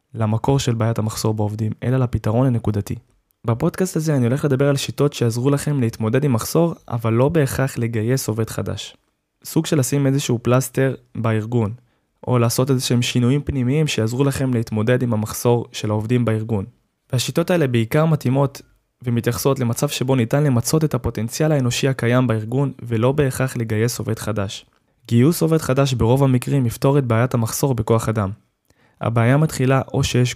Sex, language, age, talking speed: male, Hebrew, 20-39, 145 wpm